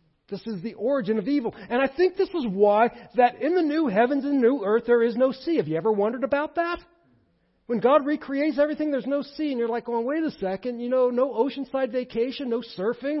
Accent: American